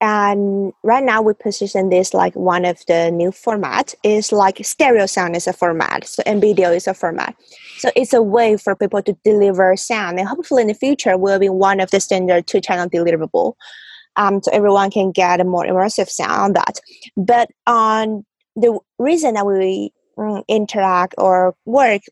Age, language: 20-39, English